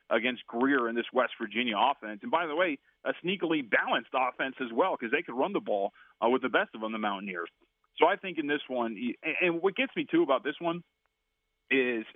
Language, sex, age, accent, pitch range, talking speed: English, male, 30-49, American, 110-145 Hz, 230 wpm